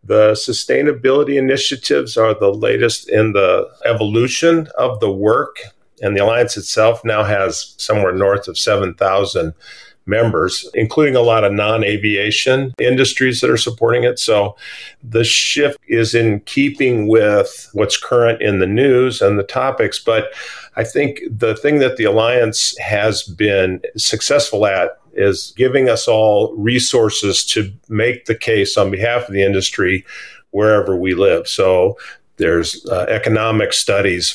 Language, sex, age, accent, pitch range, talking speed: English, male, 50-69, American, 100-130 Hz, 145 wpm